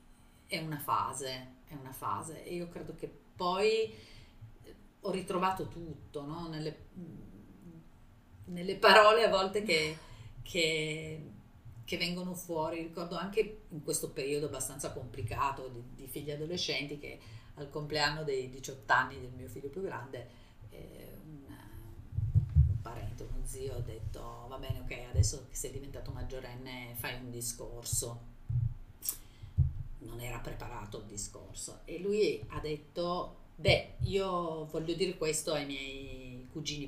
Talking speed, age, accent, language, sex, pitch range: 135 wpm, 40-59, native, Italian, female, 115-160 Hz